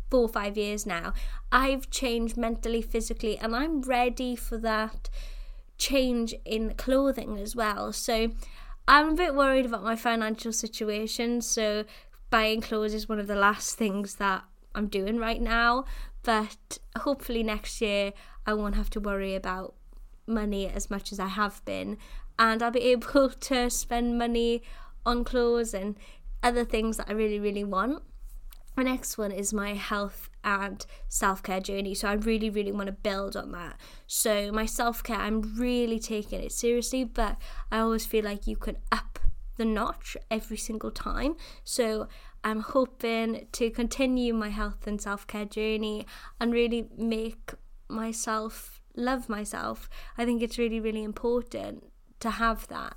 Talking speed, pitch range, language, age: 160 wpm, 210-235 Hz, English, 20-39